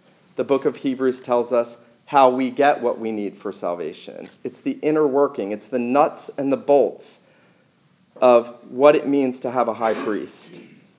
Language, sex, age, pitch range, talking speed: English, male, 40-59, 150-190 Hz, 180 wpm